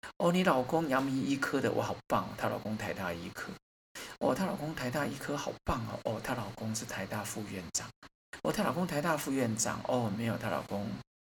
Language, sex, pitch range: Chinese, male, 105-130 Hz